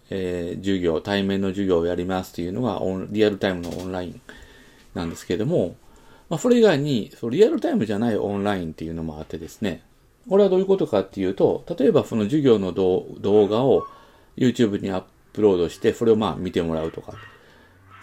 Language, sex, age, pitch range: Japanese, male, 40-59, 85-125 Hz